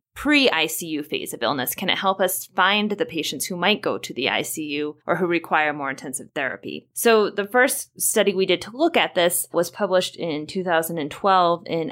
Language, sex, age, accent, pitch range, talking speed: English, female, 20-39, American, 165-205 Hz, 190 wpm